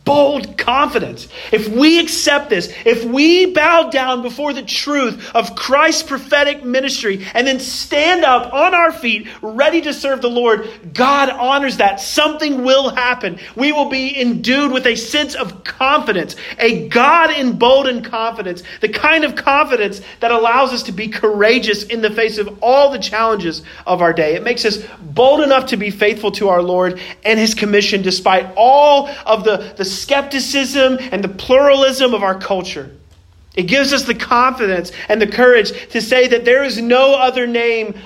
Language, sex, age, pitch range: English, male, 40-59, 205-265 Hz